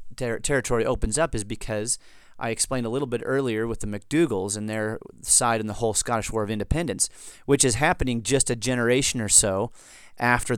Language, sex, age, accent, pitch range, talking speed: English, male, 30-49, American, 110-130 Hz, 195 wpm